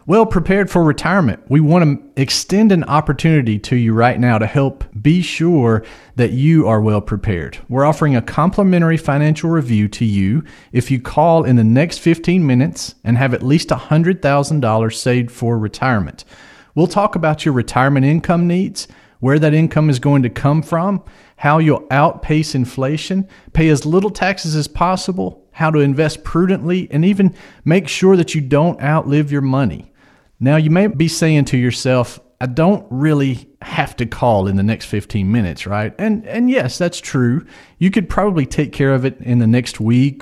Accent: American